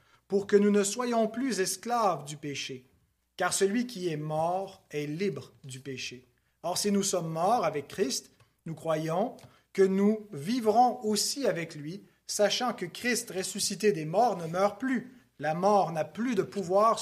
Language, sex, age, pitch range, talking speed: French, male, 30-49, 155-205 Hz, 170 wpm